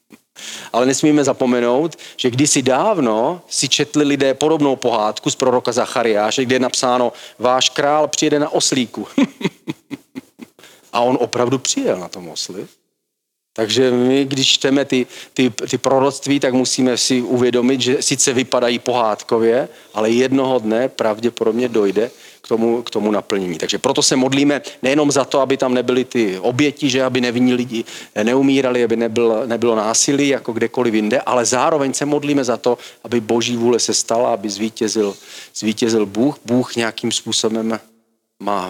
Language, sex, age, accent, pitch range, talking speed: Czech, male, 40-59, native, 115-130 Hz, 150 wpm